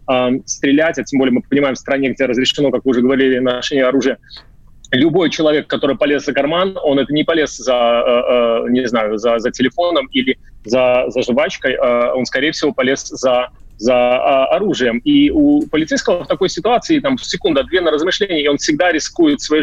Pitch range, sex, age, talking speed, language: 130-165 Hz, male, 30-49, 190 wpm, Russian